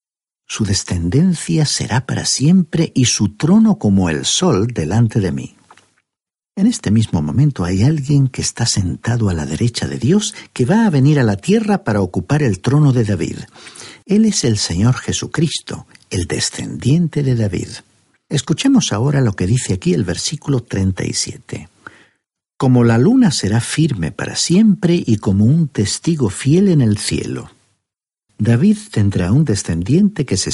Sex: male